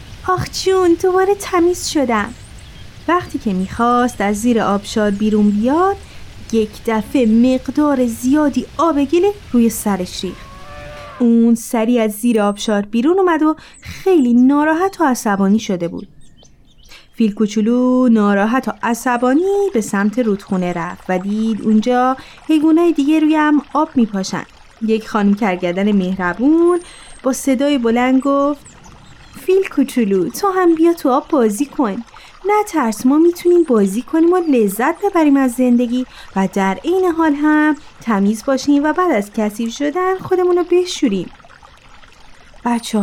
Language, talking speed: Persian, 130 wpm